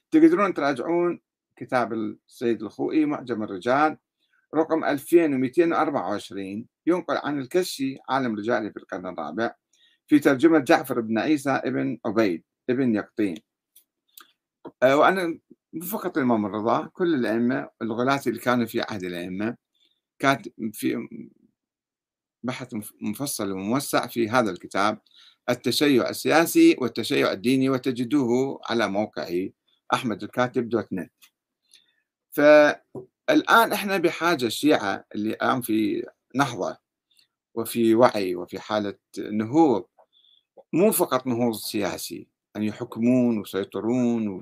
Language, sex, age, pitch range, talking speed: Arabic, male, 60-79, 115-160 Hz, 105 wpm